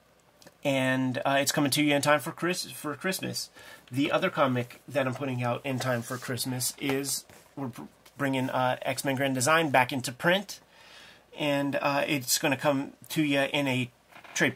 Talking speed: 180 wpm